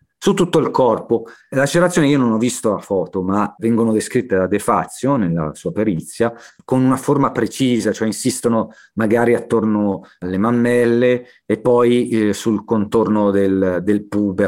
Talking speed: 160 wpm